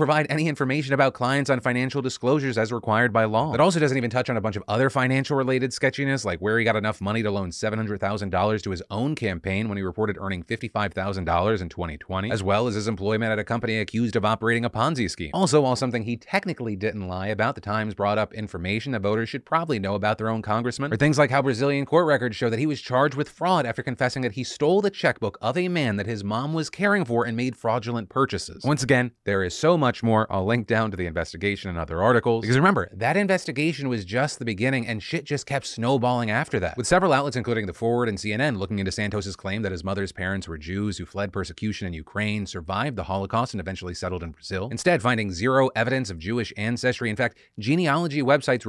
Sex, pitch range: male, 100-135 Hz